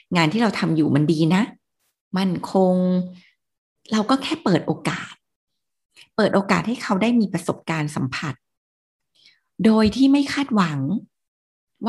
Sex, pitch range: female, 165-220 Hz